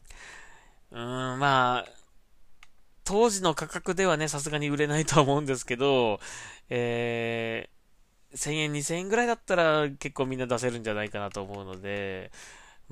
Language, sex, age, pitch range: Japanese, male, 20-39, 100-135 Hz